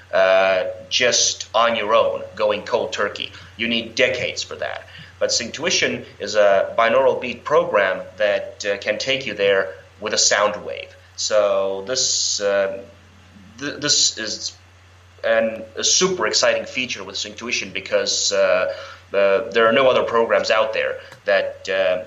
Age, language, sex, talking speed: 30-49, English, male, 150 wpm